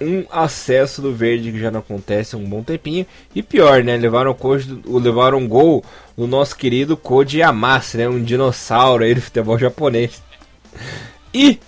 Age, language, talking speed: 20-39, Portuguese, 165 wpm